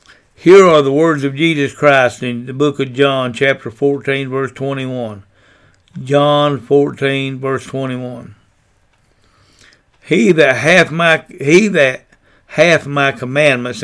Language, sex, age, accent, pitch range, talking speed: English, male, 60-79, American, 125-150 Hz, 125 wpm